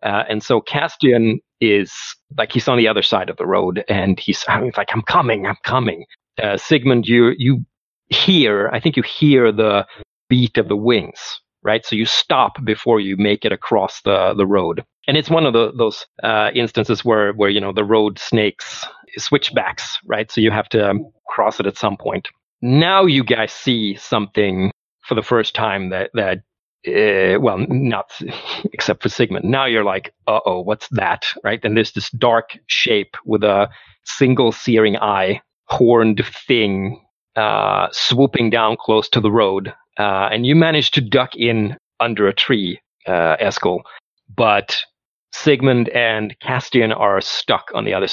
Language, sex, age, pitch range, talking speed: English, male, 40-59, 105-130 Hz, 175 wpm